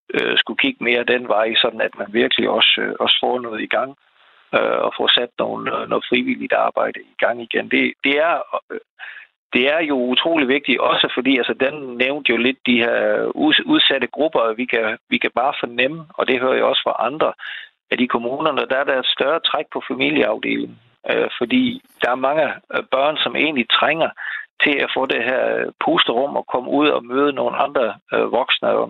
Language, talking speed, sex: Danish, 190 wpm, male